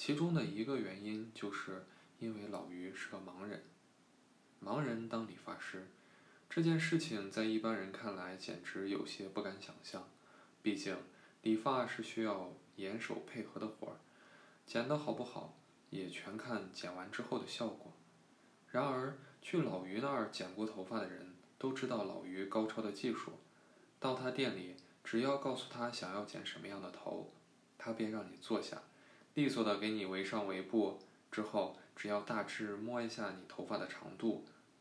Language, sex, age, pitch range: Chinese, male, 20-39, 100-125 Hz